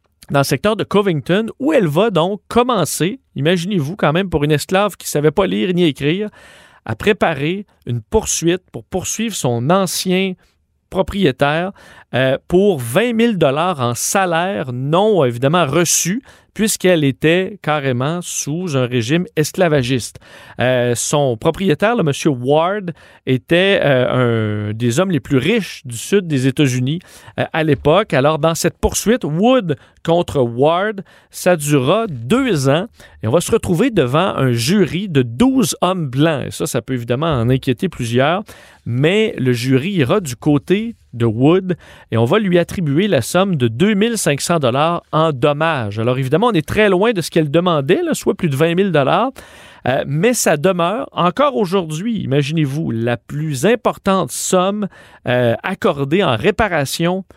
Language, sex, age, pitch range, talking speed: French, male, 40-59, 140-195 Hz, 155 wpm